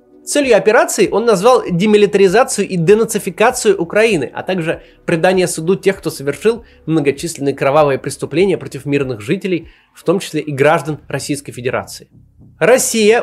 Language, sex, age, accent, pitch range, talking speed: Russian, male, 20-39, native, 170-220 Hz, 130 wpm